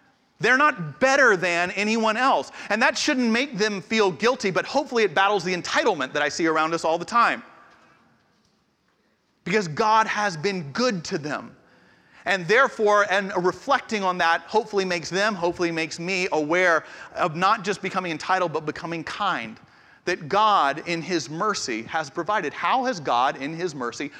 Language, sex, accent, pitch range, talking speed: English, male, American, 180-265 Hz, 170 wpm